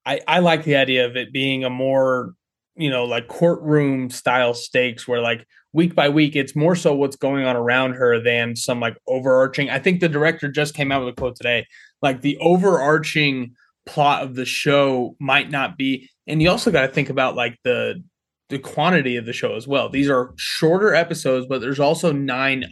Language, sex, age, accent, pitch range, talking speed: English, male, 20-39, American, 130-155 Hz, 205 wpm